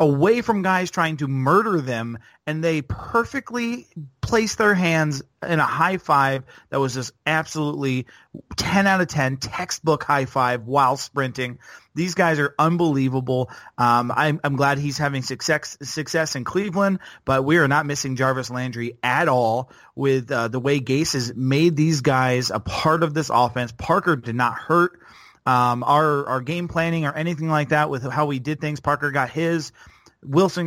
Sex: male